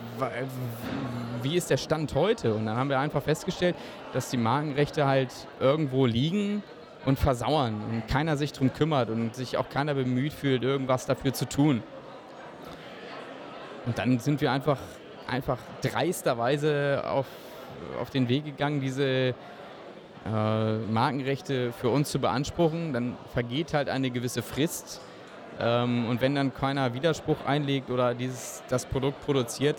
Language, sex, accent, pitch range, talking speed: German, male, German, 120-140 Hz, 140 wpm